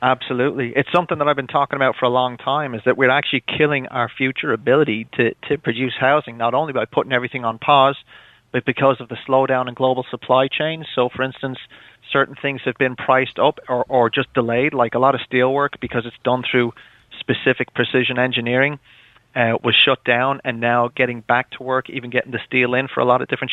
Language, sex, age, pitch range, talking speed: English, male, 30-49, 120-135 Hz, 220 wpm